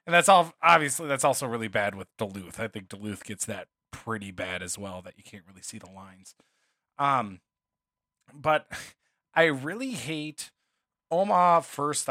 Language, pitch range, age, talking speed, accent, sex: English, 115-175 Hz, 30-49, 165 wpm, American, male